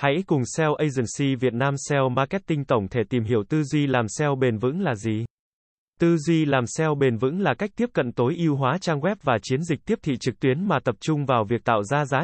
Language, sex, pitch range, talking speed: Vietnamese, male, 125-155 Hz, 245 wpm